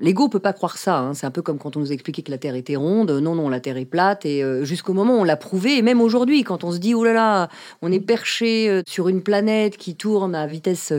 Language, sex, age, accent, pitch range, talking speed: French, female, 40-59, French, 155-220 Hz, 290 wpm